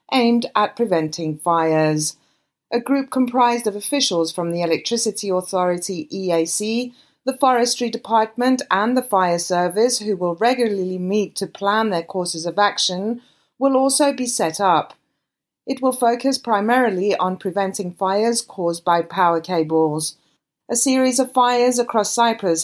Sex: female